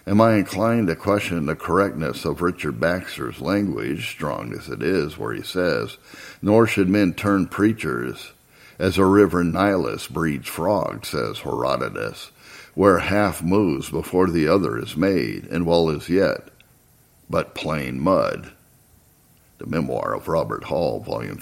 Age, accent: 60-79, American